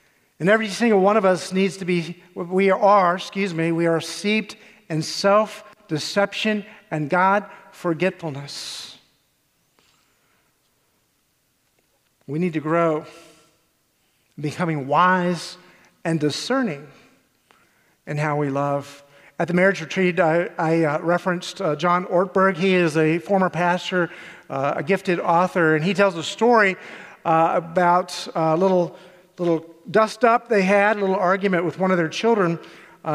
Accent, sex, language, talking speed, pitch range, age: American, male, English, 130 wpm, 170-205 Hz, 50-69